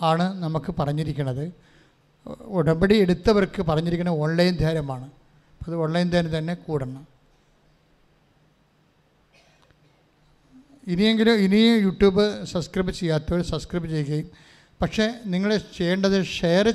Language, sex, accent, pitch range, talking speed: English, male, Indian, 155-185 Hz, 55 wpm